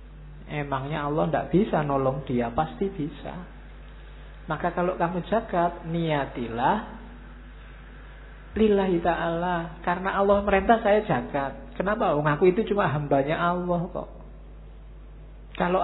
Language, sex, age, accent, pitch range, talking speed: Indonesian, male, 50-69, native, 155-190 Hz, 105 wpm